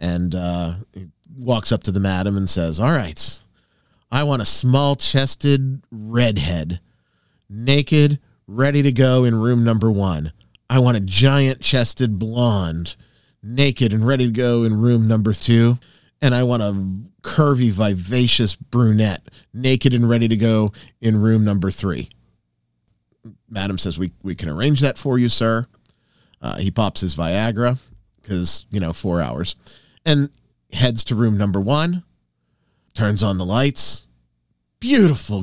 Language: English